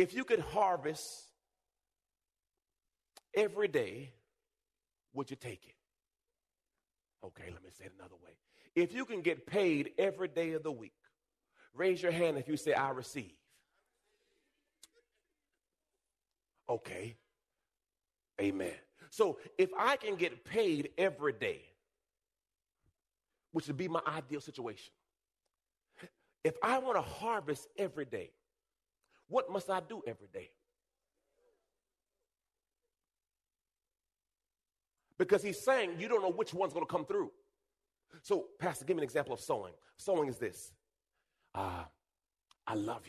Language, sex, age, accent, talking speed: English, male, 40-59, American, 125 wpm